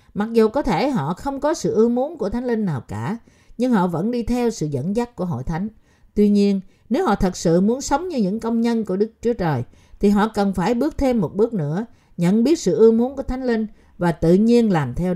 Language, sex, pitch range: Vietnamese, female, 180-245 Hz